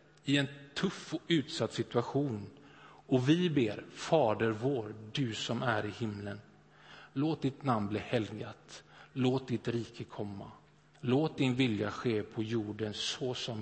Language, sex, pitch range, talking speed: Swedish, male, 110-150 Hz, 145 wpm